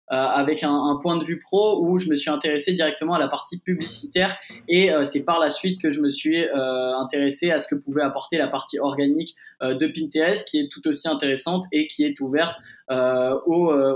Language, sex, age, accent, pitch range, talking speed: French, male, 20-39, French, 145-175 Hz, 225 wpm